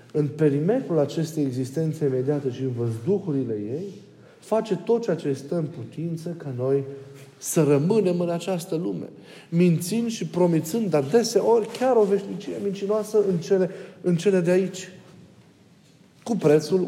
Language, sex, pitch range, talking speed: Romanian, male, 135-180 Hz, 140 wpm